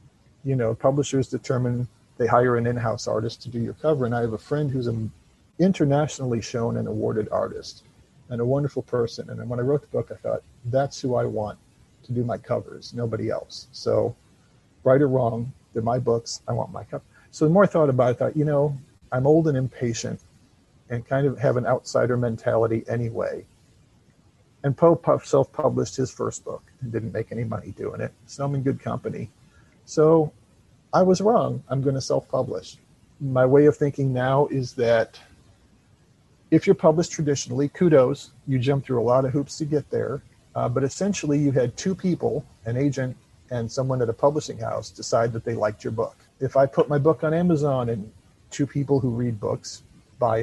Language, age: English, 40-59